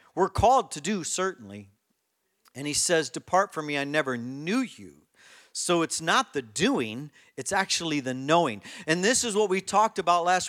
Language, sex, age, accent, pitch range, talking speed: English, male, 40-59, American, 155-205 Hz, 185 wpm